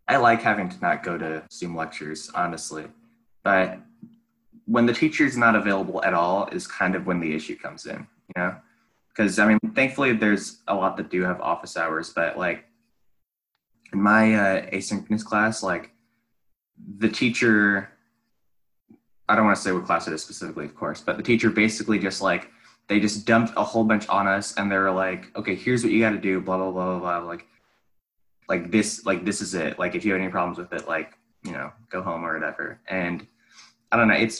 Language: English